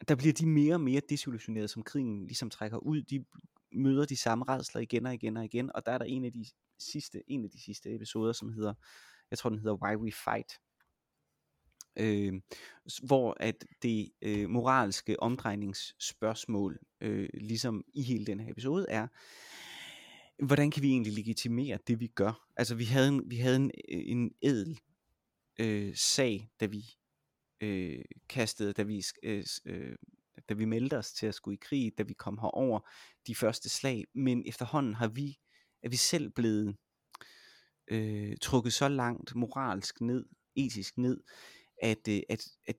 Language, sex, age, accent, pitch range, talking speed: Danish, male, 30-49, native, 105-130 Hz, 170 wpm